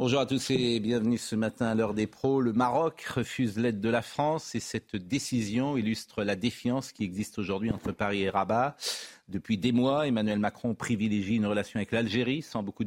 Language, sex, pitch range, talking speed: French, male, 105-125 Hz, 200 wpm